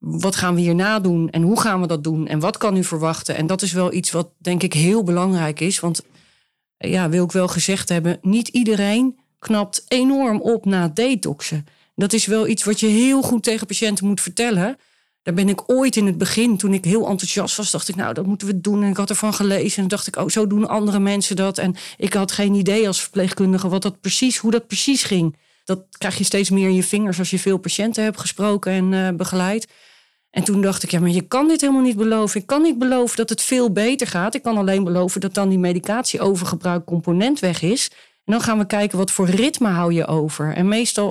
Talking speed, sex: 240 wpm, female